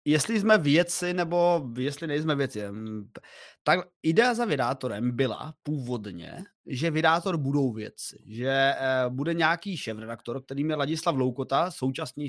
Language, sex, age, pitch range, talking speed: Czech, male, 20-39, 130-170 Hz, 125 wpm